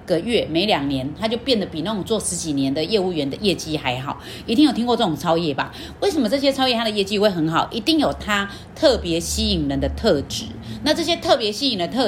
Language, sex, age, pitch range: Chinese, female, 30-49, 165-250 Hz